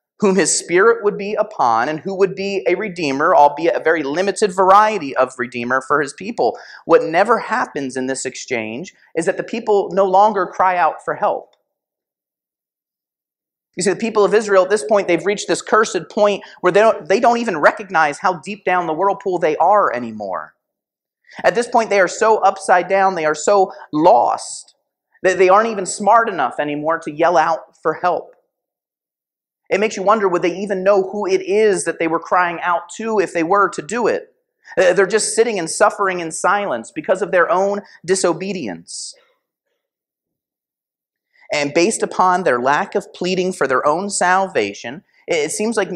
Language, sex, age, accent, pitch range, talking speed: English, male, 30-49, American, 165-210 Hz, 180 wpm